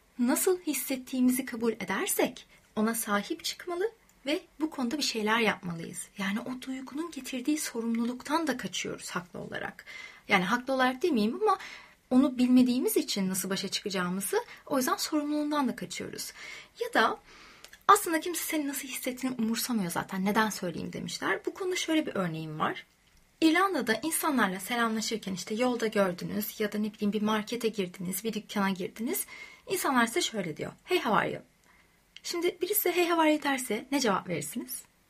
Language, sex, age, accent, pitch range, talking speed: Turkish, female, 30-49, native, 215-315 Hz, 155 wpm